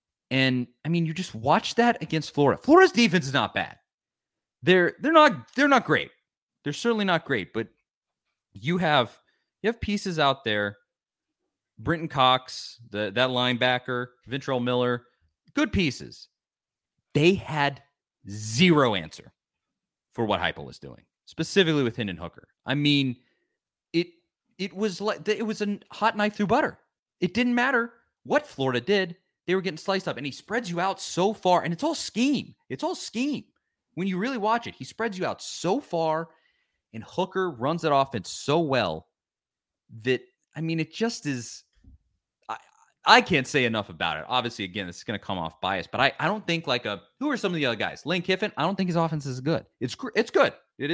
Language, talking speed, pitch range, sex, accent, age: English, 190 wpm, 120-190 Hz, male, American, 30-49